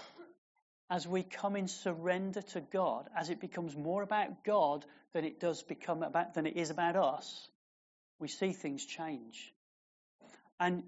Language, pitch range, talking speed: English, 150-185 Hz, 155 wpm